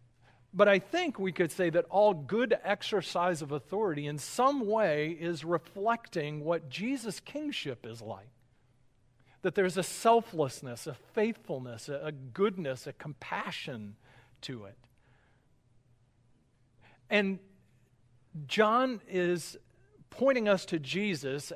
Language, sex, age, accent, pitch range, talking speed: English, male, 40-59, American, 120-175 Hz, 115 wpm